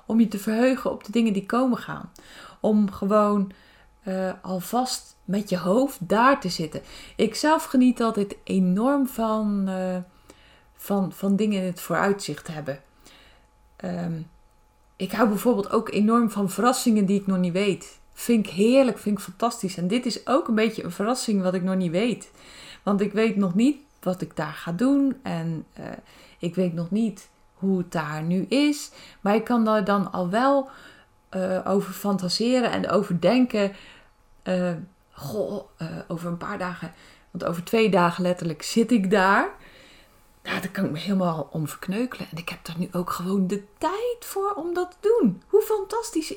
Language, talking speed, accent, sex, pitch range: Dutch, 175 wpm, Dutch, female, 185-240 Hz